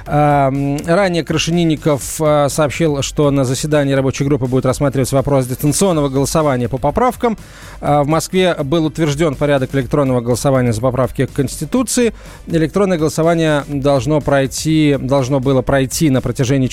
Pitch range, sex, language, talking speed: 135-170 Hz, male, Russian, 120 wpm